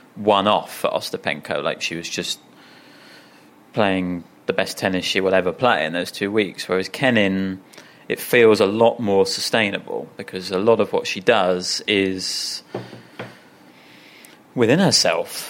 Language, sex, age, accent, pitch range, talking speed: English, male, 30-49, British, 100-120 Hz, 145 wpm